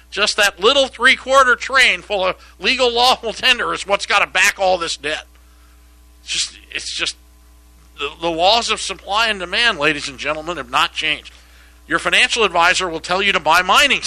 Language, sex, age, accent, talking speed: English, male, 50-69, American, 185 wpm